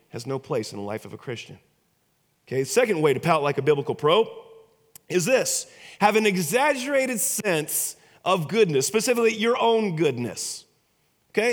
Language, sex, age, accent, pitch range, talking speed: English, male, 30-49, American, 160-210 Hz, 160 wpm